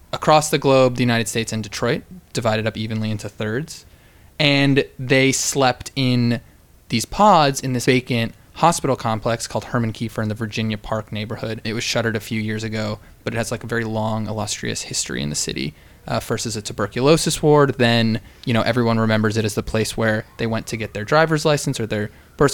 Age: 20-39